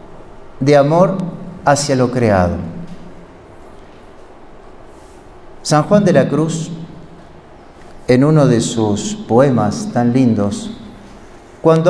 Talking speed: 90 wpm